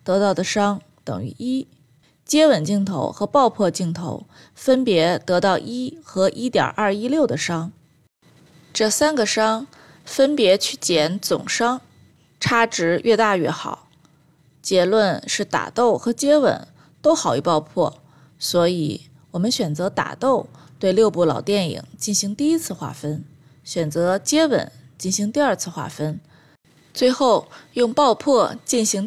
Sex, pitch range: female, 155-235 Hz